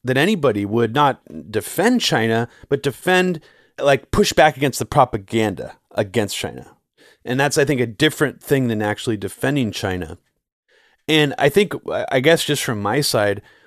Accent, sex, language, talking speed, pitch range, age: American, male, English, 160 wpm, 110-140 Hz, 30-49